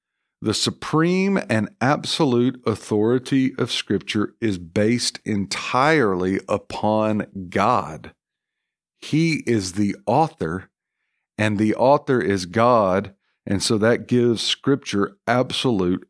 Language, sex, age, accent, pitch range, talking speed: English, male, 50-69, American, 100-125 Hz, 100 wpm